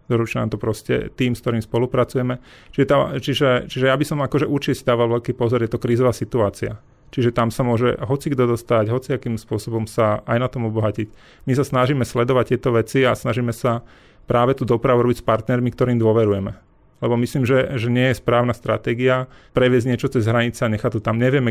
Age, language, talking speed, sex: 30-49, Slovak, 195 wpm, male